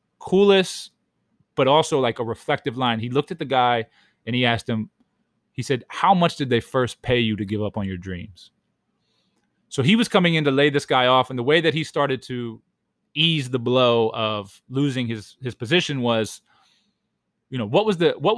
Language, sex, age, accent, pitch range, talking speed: English, male, 20-39, American, 120-155 Hz, 205 wpm